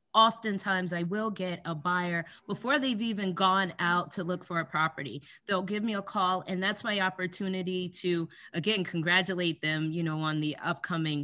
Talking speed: 180 wpm